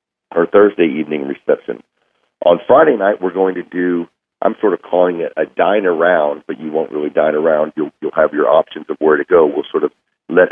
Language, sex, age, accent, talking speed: English, male, 40-59, American, 205 wpm